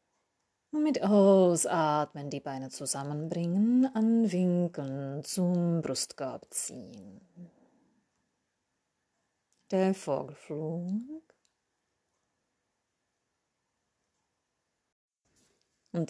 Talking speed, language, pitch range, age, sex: 50 wpm, German, 150-205 Hz, 30-49, female